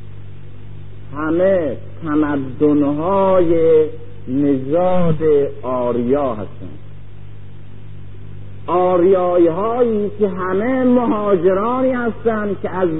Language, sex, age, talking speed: Persian, male, 50-69, 60 wpm